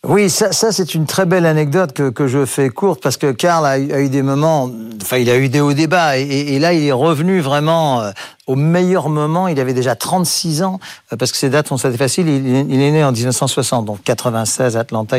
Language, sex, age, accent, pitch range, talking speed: French, male, 50-69, French, 130-160 Hz, 245 wpm